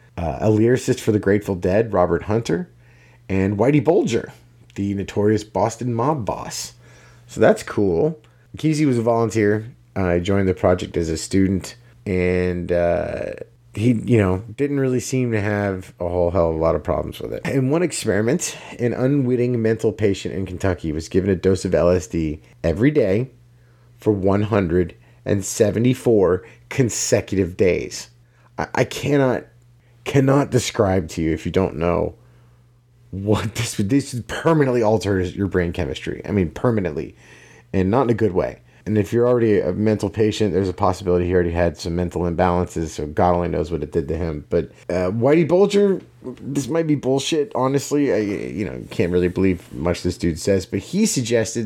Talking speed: 170 wpm